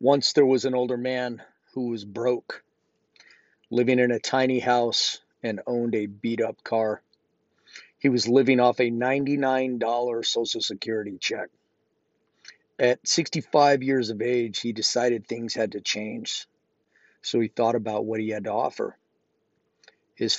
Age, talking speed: 40-59, 145 wpm